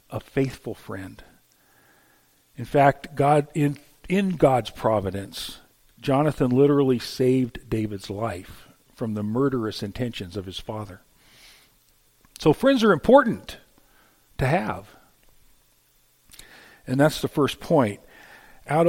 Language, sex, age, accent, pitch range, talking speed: English, male, 50-69, American, 105-140 Hz, 110 wpm